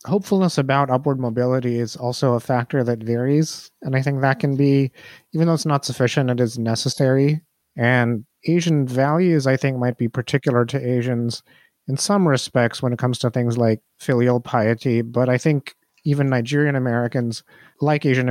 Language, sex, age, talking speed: English, male, 30-49, 175 wpm